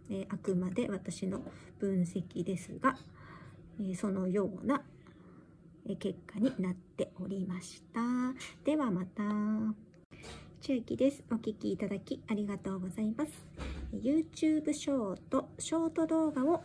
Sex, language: male, Japanese